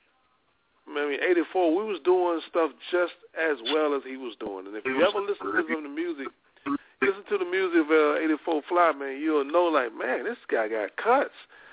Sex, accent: male, American